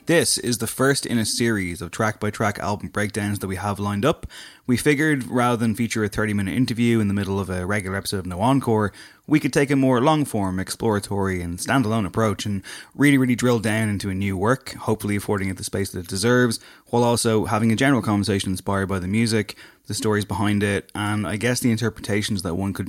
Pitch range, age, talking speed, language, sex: 95-115 Hz, 20-39, 220 wpm, English, male